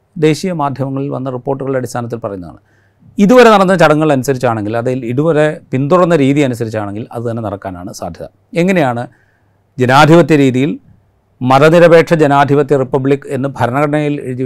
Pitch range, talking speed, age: 110-140 Hz, 115 wpm, 40-59